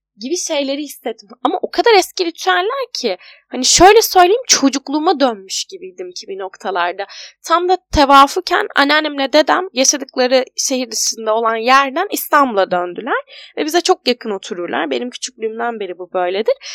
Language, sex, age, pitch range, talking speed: Turkish, female, 10-29, 225-345 Hz, 145 wpm